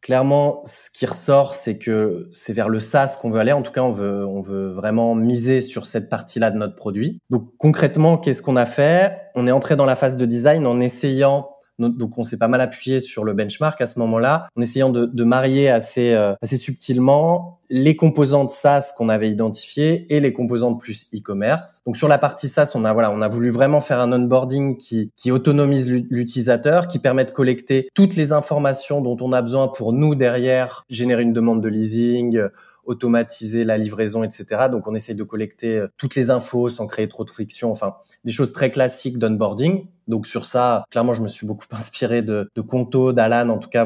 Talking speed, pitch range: 210 wpm, 110-135 Hz